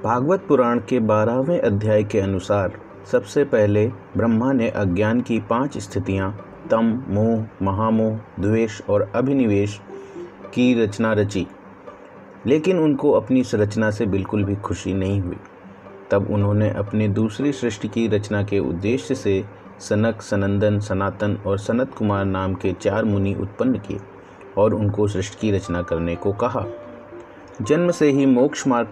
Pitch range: 100-115 Hz